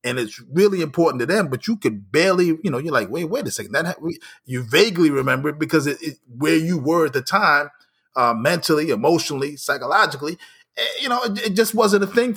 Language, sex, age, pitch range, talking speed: English, male, 30-49, 135-190 Hz, 220 wpm